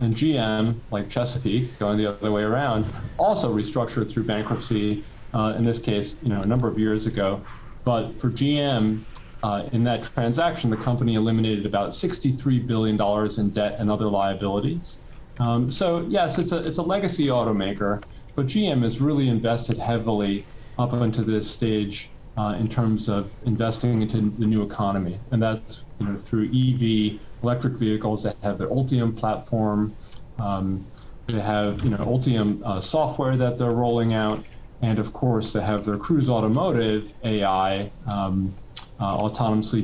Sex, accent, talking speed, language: male, American, 160 wpm, English